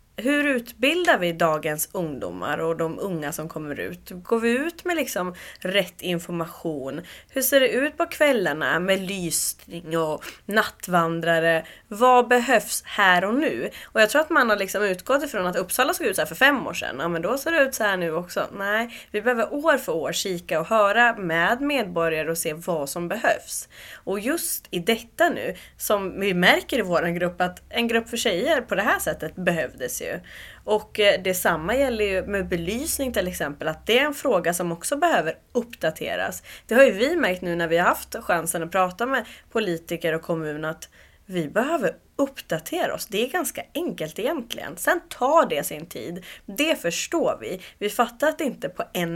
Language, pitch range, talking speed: Swedish, 170-250 Hz, 185 wpm